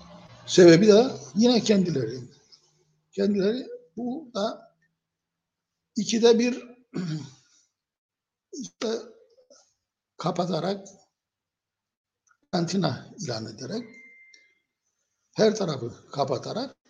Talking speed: 60 wpm